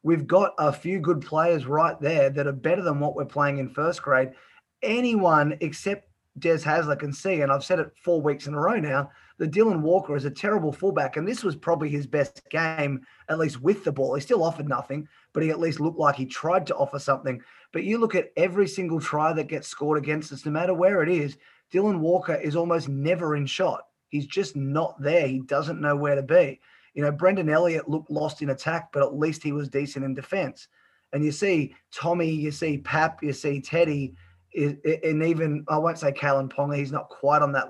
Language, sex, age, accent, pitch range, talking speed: English, male, 20-39, Australian, 140-170 Hz, 225 wpm